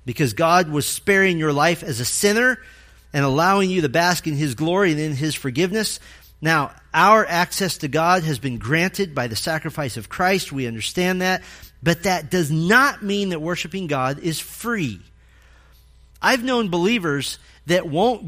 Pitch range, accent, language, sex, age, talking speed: 135-190 Hz, American, English, male, 40-59, 170 wpm